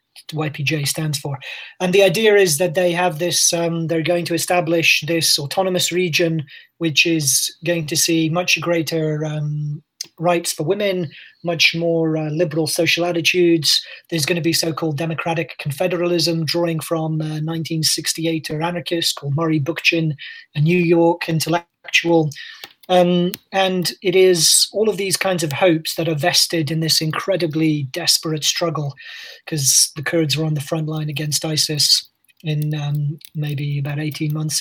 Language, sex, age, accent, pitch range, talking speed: English, male, 30-49, British, 155-175 Hz, 155 wpm